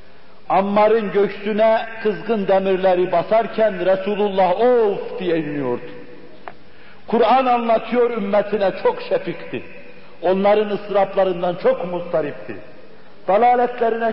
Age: 60-79